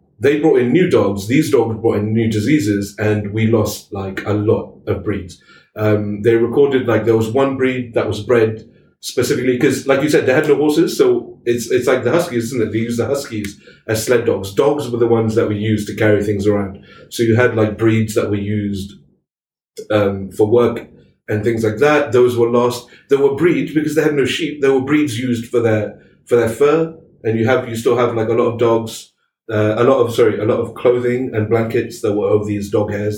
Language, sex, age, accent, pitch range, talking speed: English, male, 30-49, British, 105-130 Hz, 230 wpm